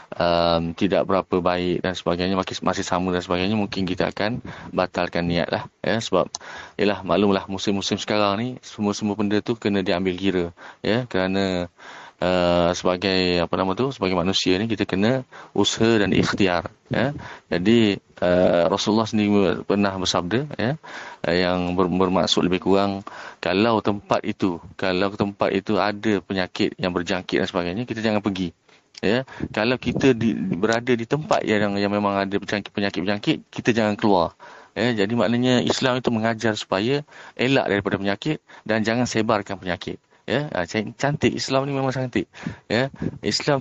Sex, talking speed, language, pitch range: male, 155 wpm, Malay, 90-115 Hz